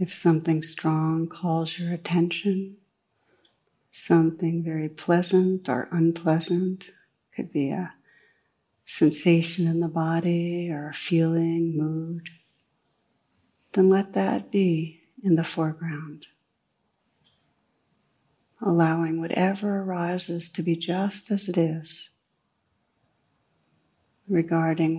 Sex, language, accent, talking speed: female, English, American, 95 wpm